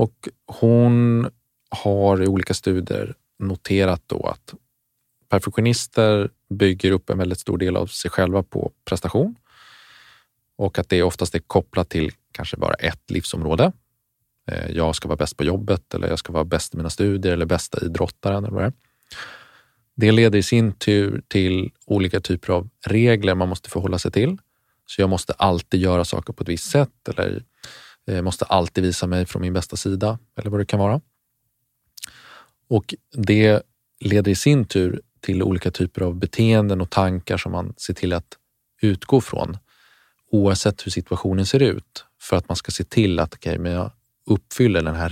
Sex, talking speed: male, 170 wpm